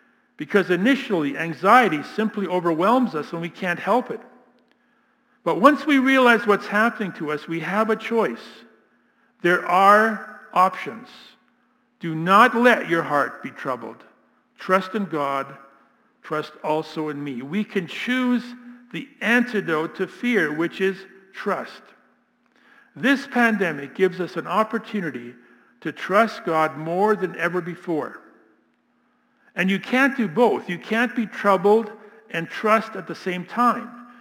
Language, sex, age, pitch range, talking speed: English, male, 50-69, 175-235 Hz, 135 wpm